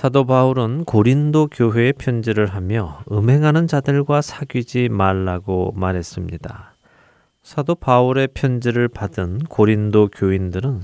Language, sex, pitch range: Korean, male, 105-135 Hz